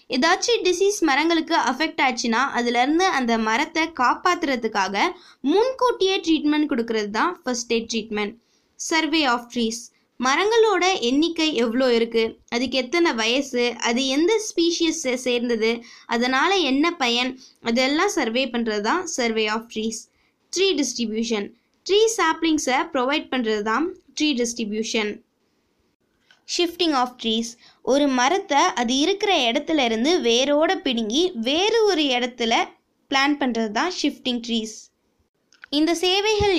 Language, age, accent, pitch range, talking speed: Tamil, 20-39, native, 235-330 Hz, 110 wpm